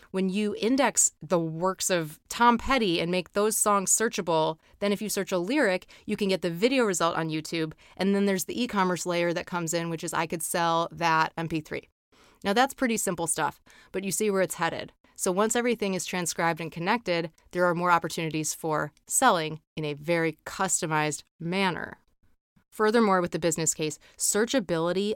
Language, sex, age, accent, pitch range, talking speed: English, female, 20-39, American, 160-190 Hz, 185 wpm